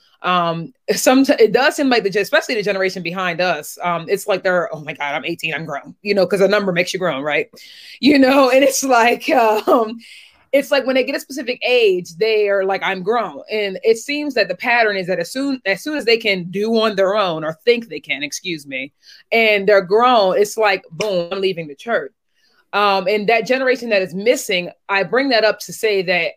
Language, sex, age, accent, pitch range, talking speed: English, female, 30-49, American, 180-235 Hz, 225 wpm